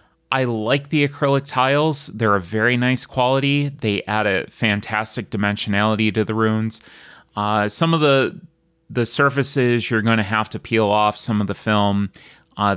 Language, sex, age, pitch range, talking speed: English, male, 30-49, 100-125 Hz, 170 wpm